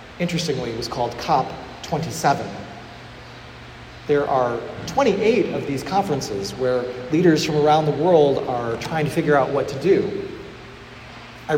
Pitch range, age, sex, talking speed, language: 135-180 Hz, 40-59, male, 135 wpm, English